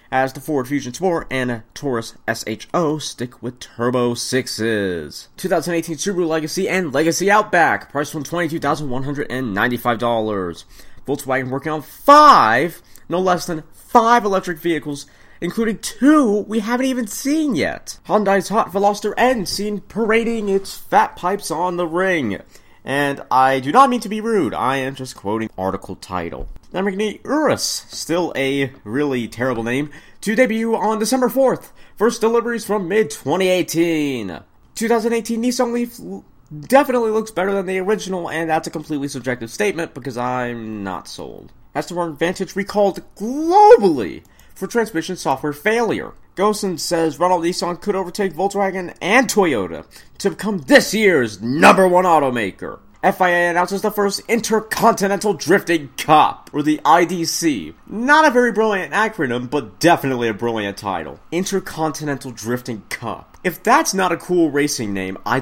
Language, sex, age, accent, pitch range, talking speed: English, male, 30-49, American, 130-205 Hz, 145 wpm